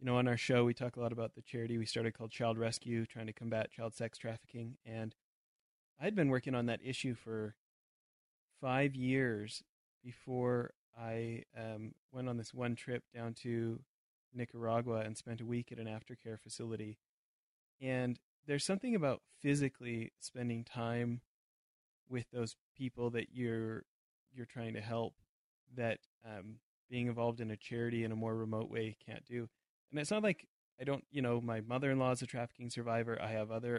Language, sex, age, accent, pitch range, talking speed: English, male, 20-39, American, 115-130 Hz, 175 wpm